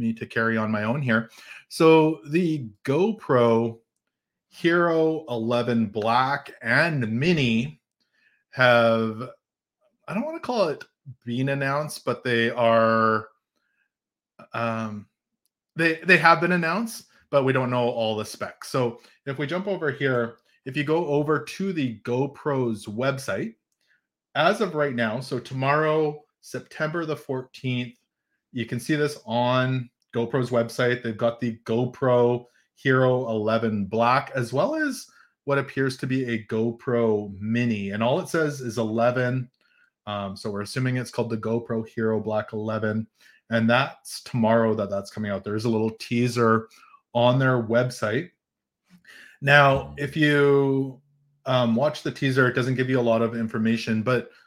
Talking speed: 150 wpm